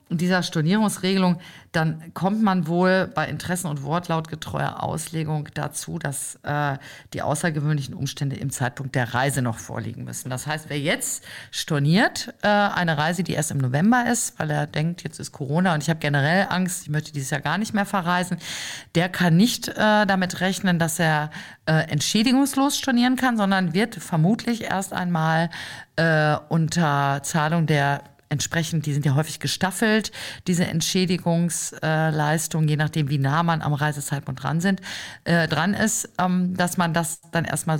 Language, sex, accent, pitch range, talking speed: German, female, German, 150-185 Hz, 160 wpm